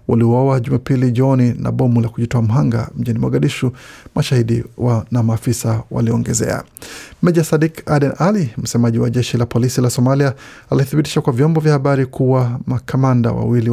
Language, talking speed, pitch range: Swahili, 155 wpm, 115-135 Hz